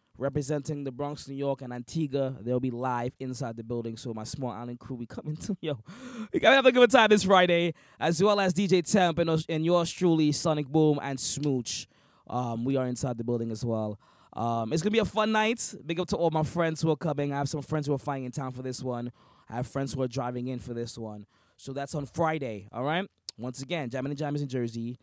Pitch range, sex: 120-155 Hz, male